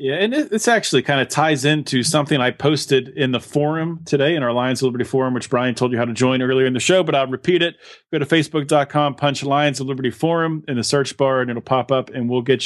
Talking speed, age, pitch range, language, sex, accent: 265 wpm, 30-49, 125-155 Hz, English, male, American